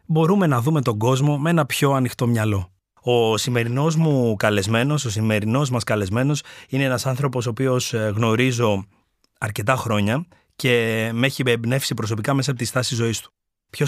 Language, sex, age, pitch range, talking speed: Greek, male, 30-49, 110-135 Hz, 165 wpm